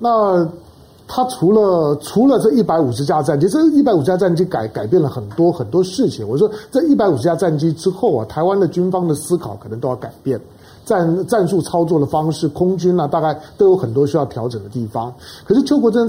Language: Chinese